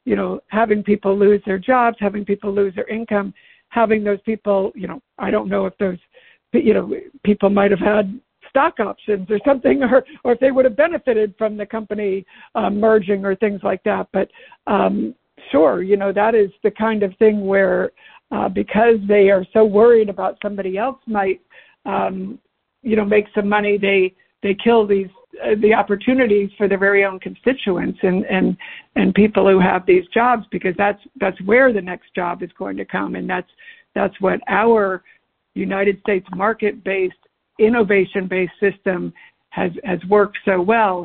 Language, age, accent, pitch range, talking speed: English, 60-79, American, 195-235 Hz, 180 wpm